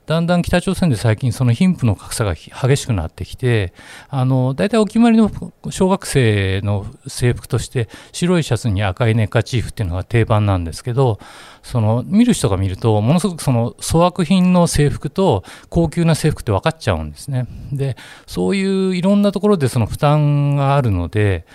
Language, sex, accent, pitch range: Japanese, male, native, 105-165 Hz